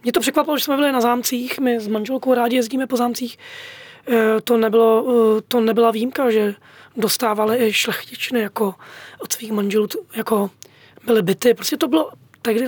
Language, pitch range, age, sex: Czech, 220-265 Hz, 20-39, female